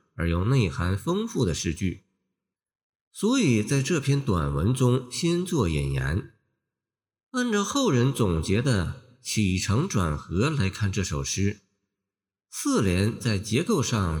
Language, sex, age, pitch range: Chinese, male, 50-69, 95-140 Hz